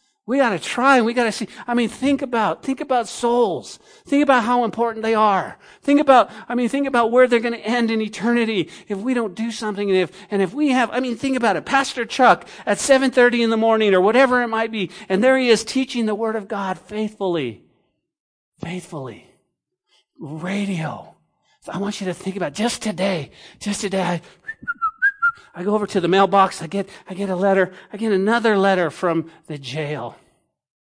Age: 40-59